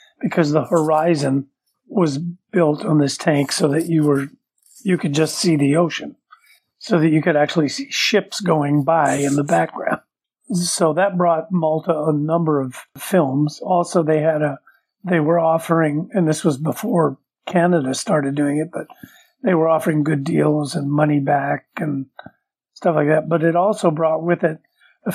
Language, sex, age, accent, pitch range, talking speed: English, male, 50-69, American, 150-185 Hz, 175 wpm